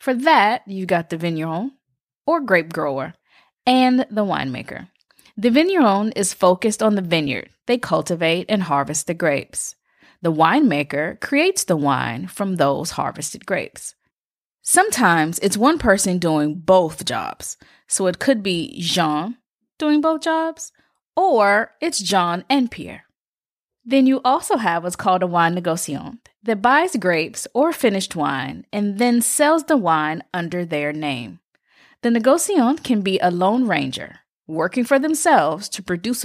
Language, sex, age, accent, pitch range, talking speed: English, female, 20-39, American, 170-265 Hz, 145 wpm